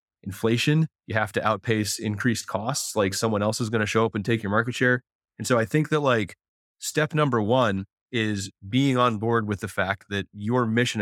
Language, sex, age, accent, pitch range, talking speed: English, male, 30-49, American, 100-125 Hz, 210 wpm